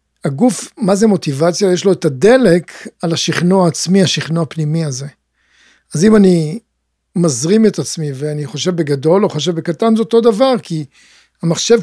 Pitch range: 155-195 Hz